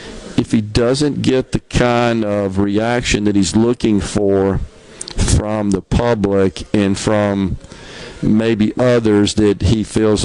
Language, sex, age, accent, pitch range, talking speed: English, male, 50-69, American, 105-120 Hz, 130 wpm